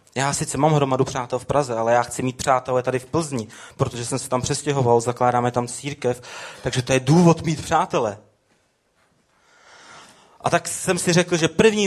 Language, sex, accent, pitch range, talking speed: Czech, male, native, 115-140 Hz, 180 wpm